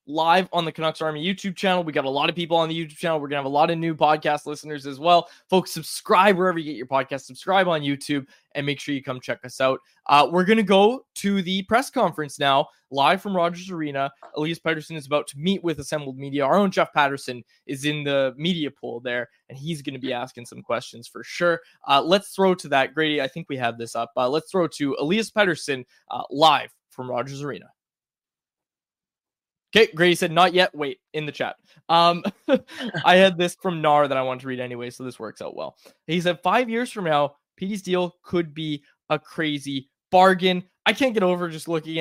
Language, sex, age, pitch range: English, male, 20-39, 140-185 Hz